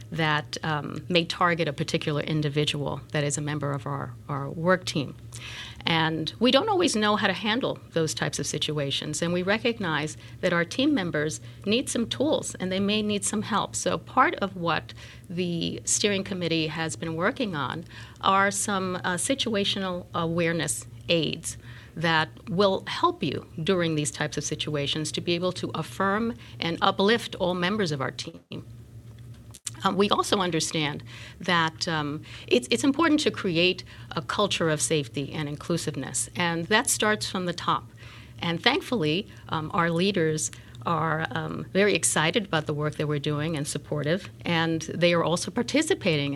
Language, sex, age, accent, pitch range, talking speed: English, female, 50-69, American, 145-180 Hz, 165 wpm